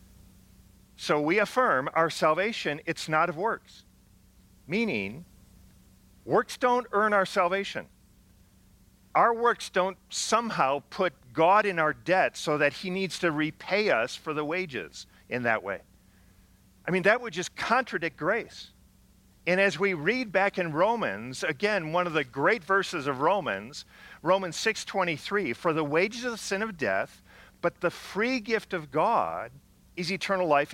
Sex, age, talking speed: male, 50-69, 155 wpm